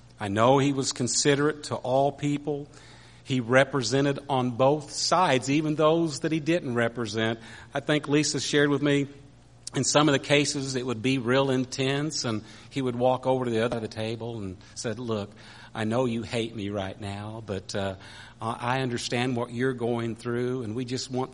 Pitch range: 110-135 Hz